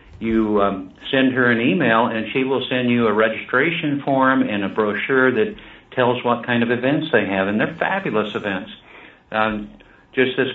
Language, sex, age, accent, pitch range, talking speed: English, male, 60-79, American, 105-125 Hz, 180 wpm